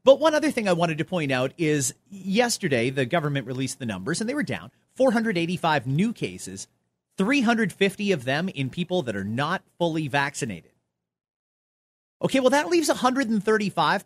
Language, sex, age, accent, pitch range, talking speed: English, male, 30-49, American, 145-225 Hz, 160 wpm